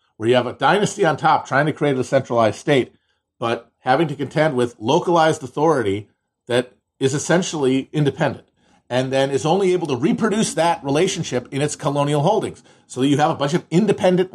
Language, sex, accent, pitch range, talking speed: English, male, American, 120-165 Hz, 185 wpm